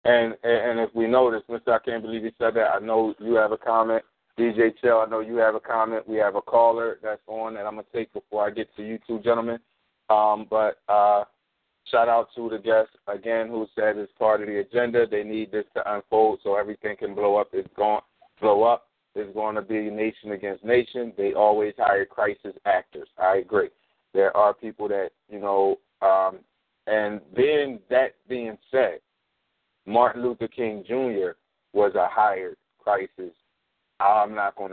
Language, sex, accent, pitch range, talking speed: English, male, American, 105-120 Hz, 195 wpm